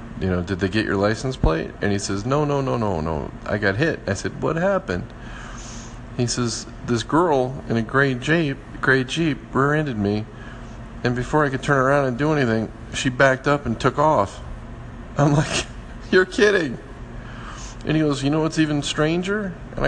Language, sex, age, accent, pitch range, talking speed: English, male, 40-59, American, 105-130 Hz, 190 wpm